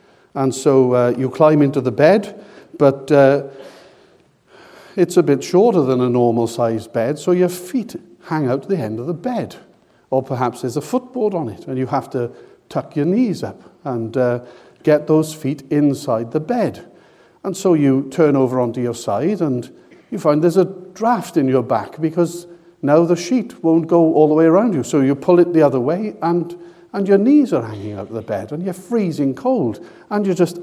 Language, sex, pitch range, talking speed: English, male, 135-180 Hz, 205 wpm